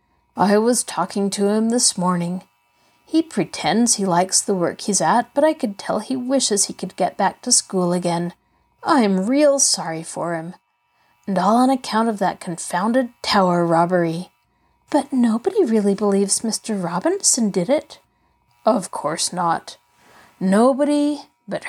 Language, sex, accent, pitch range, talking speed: English, female, American, 185-270 Hz, 150 wpm